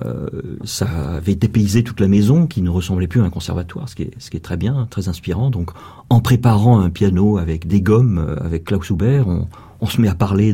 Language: French